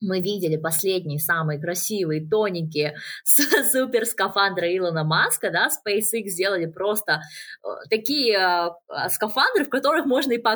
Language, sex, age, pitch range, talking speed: Russian, female, 20-39, 170-230 Hz, 115 wpm